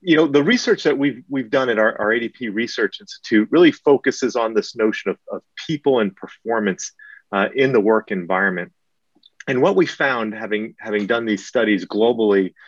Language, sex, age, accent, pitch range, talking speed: English, male, 30-49, American, 105-145 Hz, 185 wpm